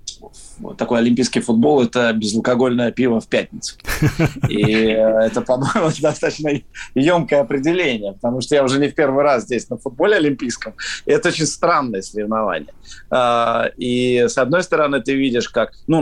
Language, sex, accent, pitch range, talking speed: Russian, male, native, 110-130 Hz, 140 wpm